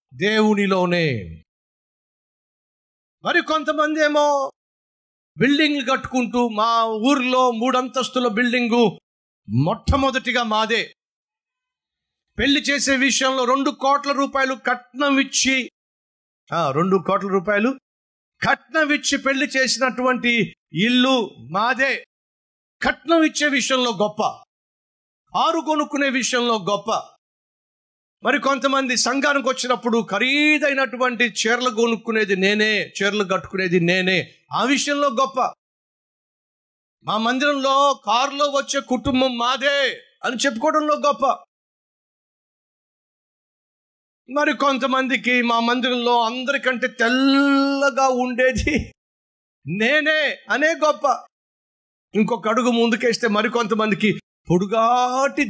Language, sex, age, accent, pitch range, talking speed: Telugu, male, 50-69, native, 225-280 Hz, 75 wpm